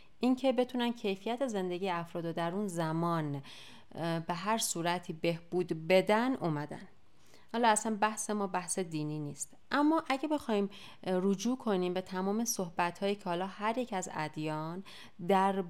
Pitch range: 160-210 Hz